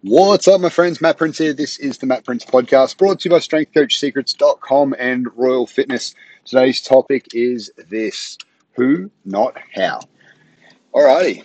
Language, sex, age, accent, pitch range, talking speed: English, male, 30-49, Australian, 100-140 Hz, 150 wpm